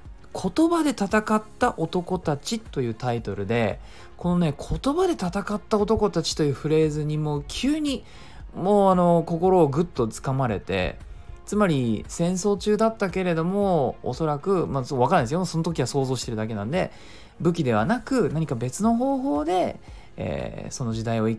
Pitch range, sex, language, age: 115-190 Hz, male, Japanese, 20-39